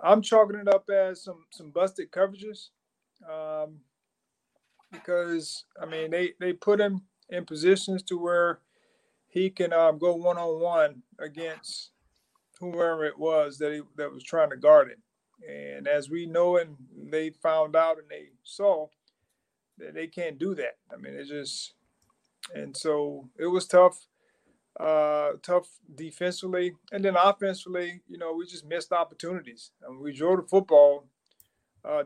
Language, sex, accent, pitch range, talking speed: English, male, American, 150-180 Hz, 150 wpm